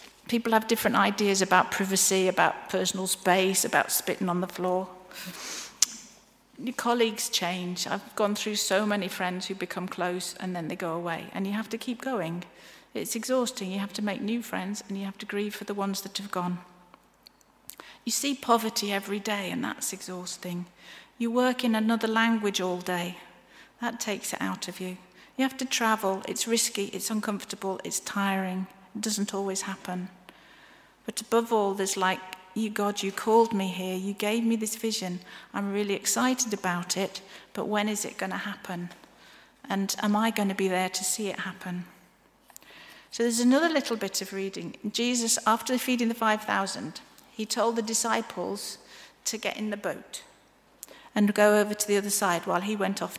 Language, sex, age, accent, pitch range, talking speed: English, female, 50-69, British, 190-225 Hz, 185 wpm